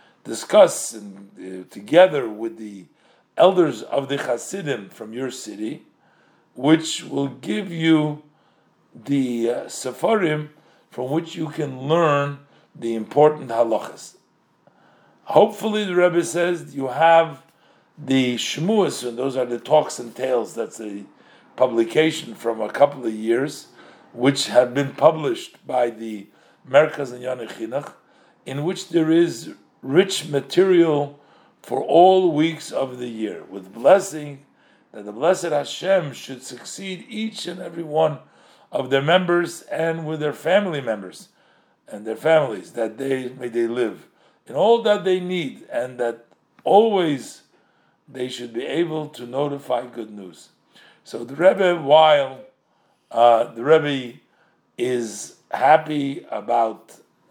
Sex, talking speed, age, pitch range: male, 130 wpm, 50-69, 120-165 Hz